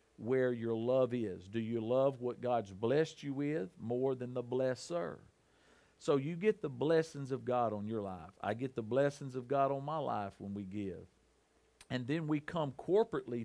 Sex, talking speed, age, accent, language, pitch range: male, 190 wpm, 50-69, American, English, 120-145 Hz